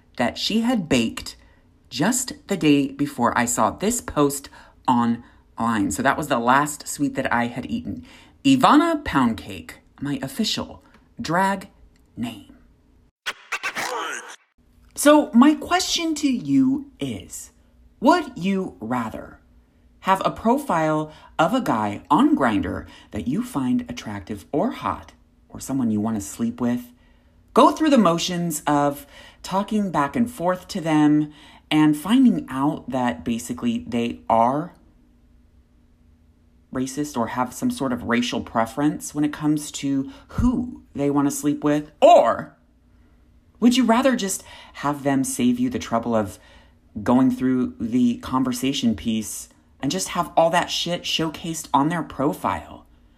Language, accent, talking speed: English, American, 140 wpm